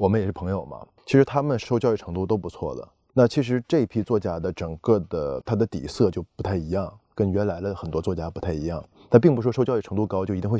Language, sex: Chinese, male